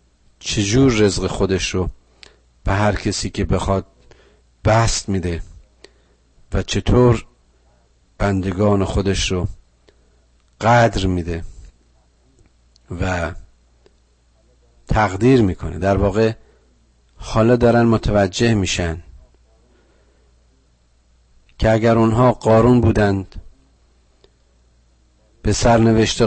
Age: 50-69